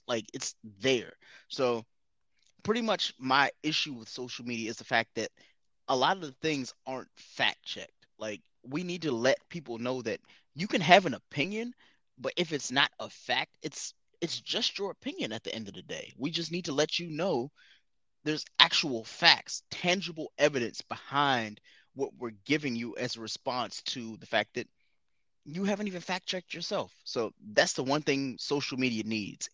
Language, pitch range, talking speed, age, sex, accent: English, 120-155 Hz, 185 wpm, 20-39, male, American